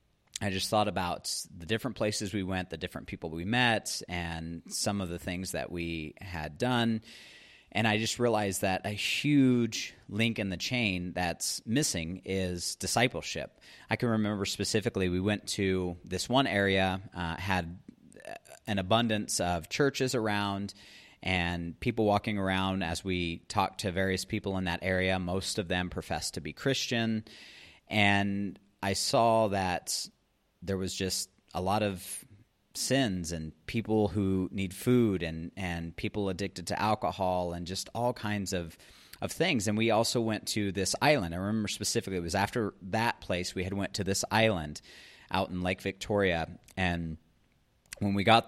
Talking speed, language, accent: 165 wpm, English, American